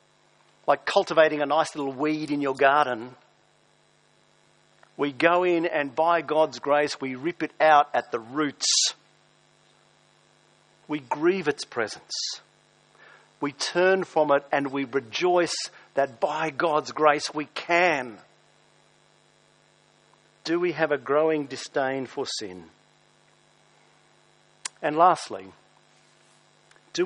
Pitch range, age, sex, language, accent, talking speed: 140-170 Hz, 50-69, male, English, Australian, 115 wpm